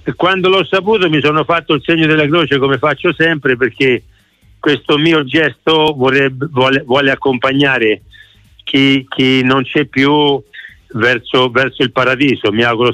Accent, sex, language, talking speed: native, male, Italian, 150 wpm